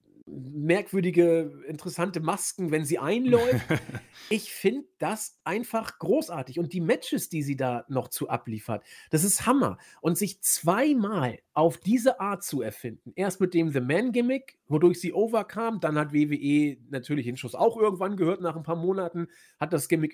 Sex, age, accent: male, 40-59, German